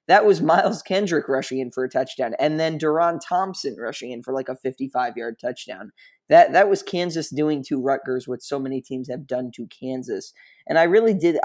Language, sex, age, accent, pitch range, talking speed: English, male, 20-39, American, 130-165 Hz, 210 wpm